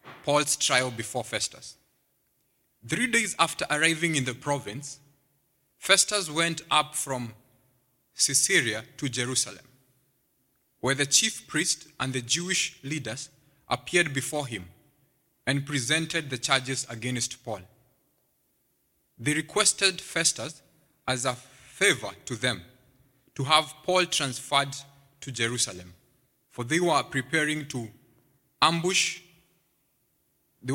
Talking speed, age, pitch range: 110 wpm, 30-49, 130-160 Hz